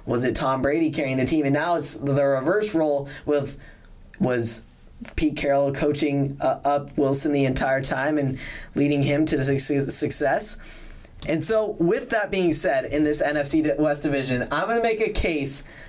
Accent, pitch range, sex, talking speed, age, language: American, 140-165 Hz, male, 180 wpm, 10-29, English